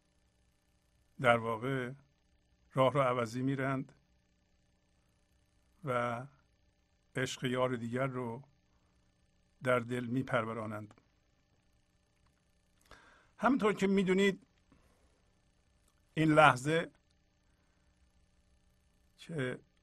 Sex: male